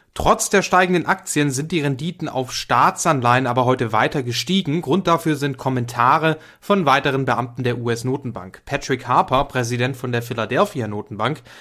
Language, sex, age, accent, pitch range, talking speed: English, male, 30-49, German, 120-160 Hz, 145 wpm